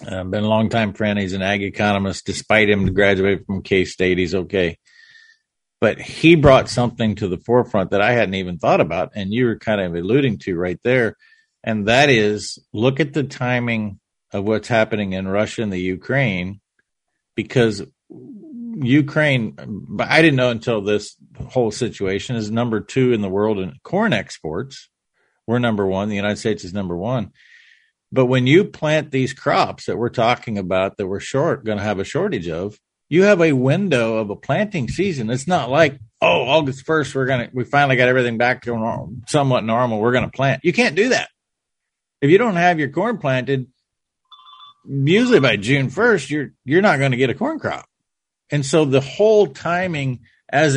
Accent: American